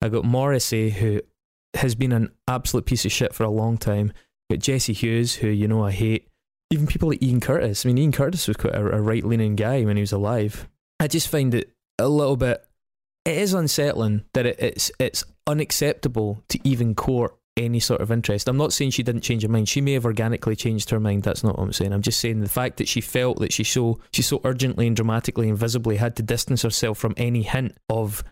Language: English